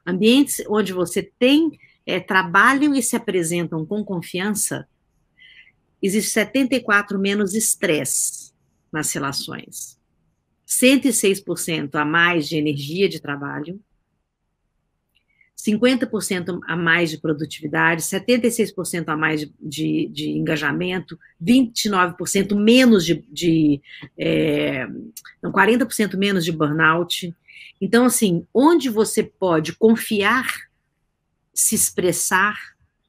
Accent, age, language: Brazilian, 50-69, Portuguese